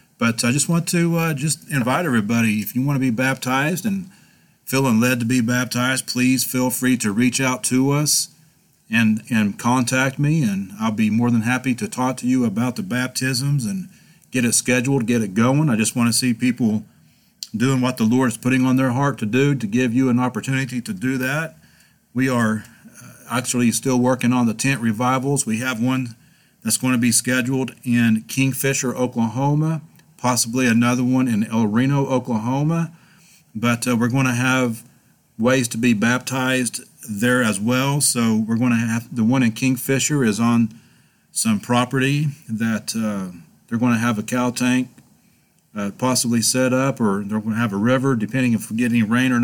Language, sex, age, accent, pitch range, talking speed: English, male, 40-59, American, 120-135 Hz, 190 wpm